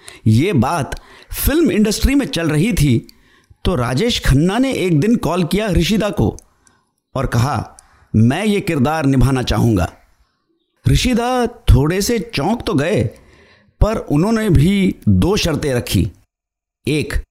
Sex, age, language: male, 50-69, Hindi